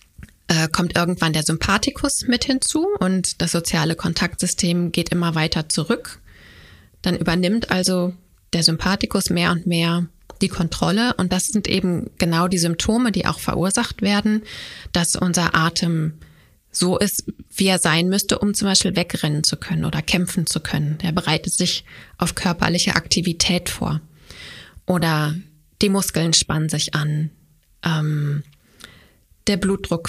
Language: German